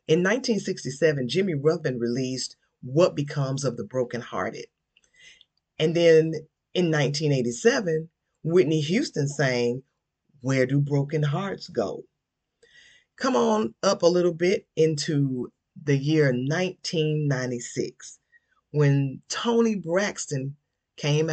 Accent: American